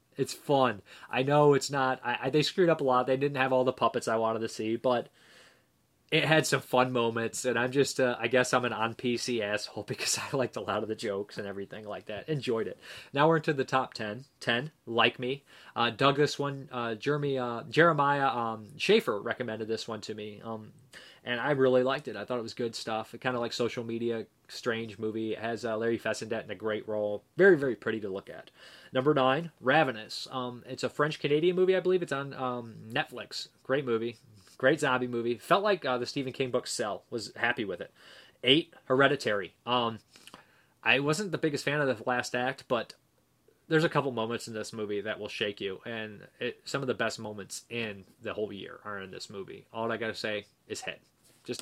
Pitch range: 115-140 Hz